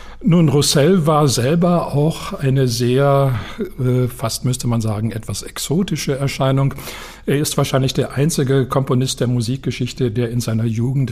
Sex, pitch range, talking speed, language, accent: male, 115-140 Hz, 140 wpm, German, German